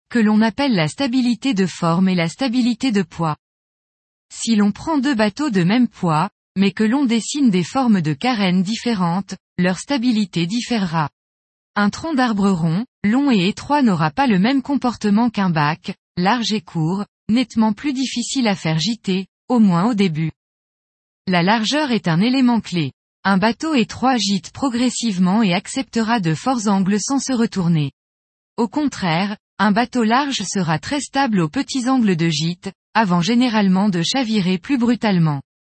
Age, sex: 20-39, female